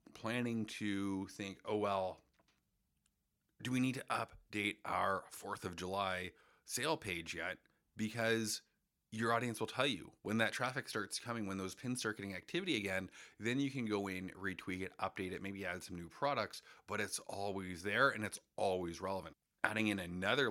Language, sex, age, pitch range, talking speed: English, male, 30-49, 100-115 Hz, 175 wpm